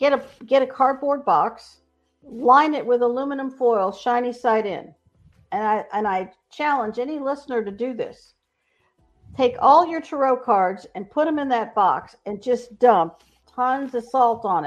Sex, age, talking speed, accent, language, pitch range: female, 50-69, 170 wpm, American, English, 215-270 Hz